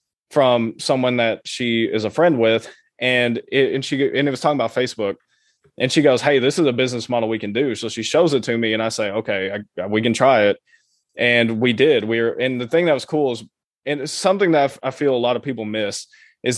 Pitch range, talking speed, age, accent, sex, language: 115-140 Hz, 250 wpm, 20-39, American, male, English